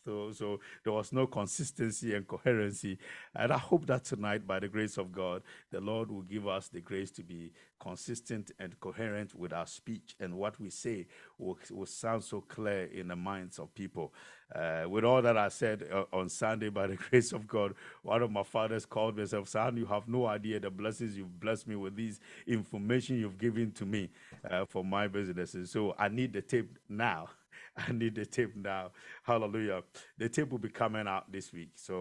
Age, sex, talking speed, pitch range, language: 50-69, male, 205 wpm, 95-110 Hz, English